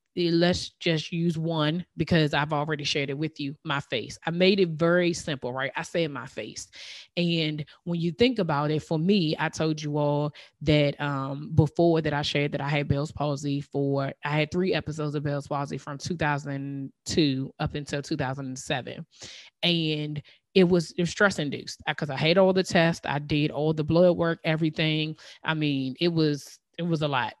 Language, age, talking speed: English, 20-39, 190 wpm